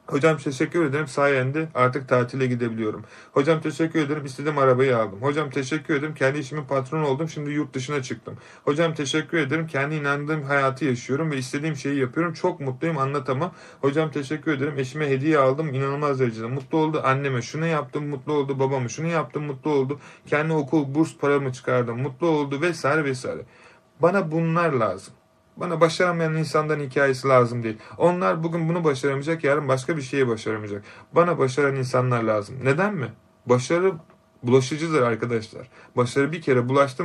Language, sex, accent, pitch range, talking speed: Turkish, male, native, 130-160 Hz, 160 wpm